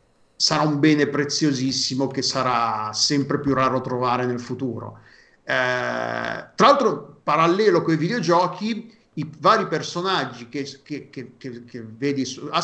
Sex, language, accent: male, Italian, native